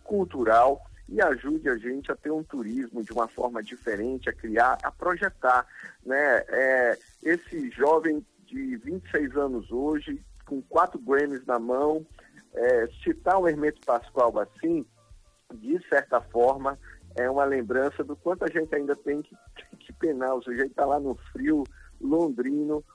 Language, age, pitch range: Portuguese, 50-69, 115-160 Hz